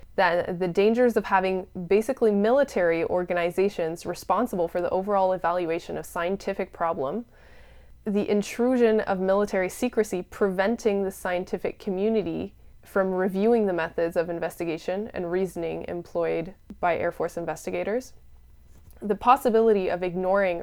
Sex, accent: female, American